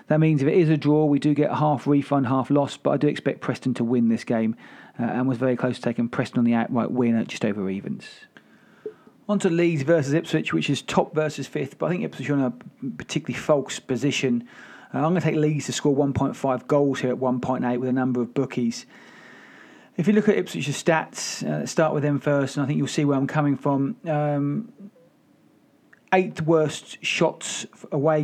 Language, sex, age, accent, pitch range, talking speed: English, male, 30-49, British, 135-160 Hz, 215 wpm